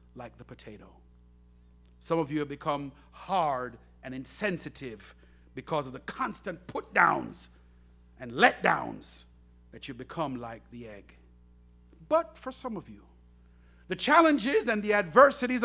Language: English